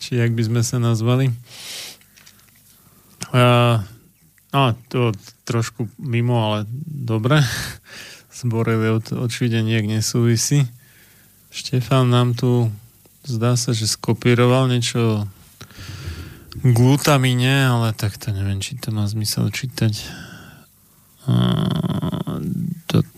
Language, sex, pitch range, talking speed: Slovak, male, 110-130 Hz, 95 wpm